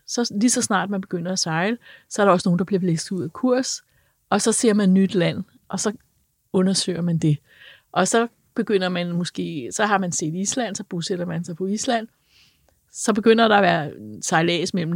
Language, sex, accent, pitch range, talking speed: Danish, female, native, 165-200 Hz, 215 wpm